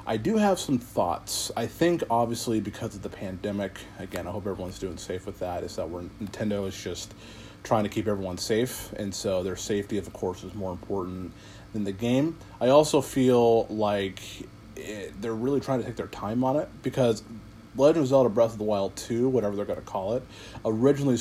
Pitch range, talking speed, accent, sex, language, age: 100-115 Hz, 205 wpm, American, male, English, 30-49